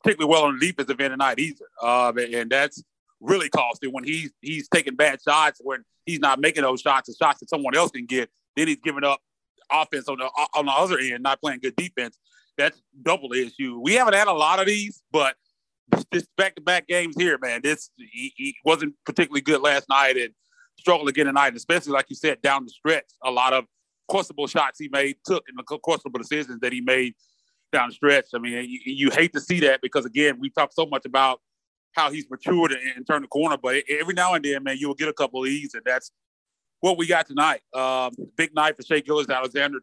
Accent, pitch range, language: American, 130-155 Hz, English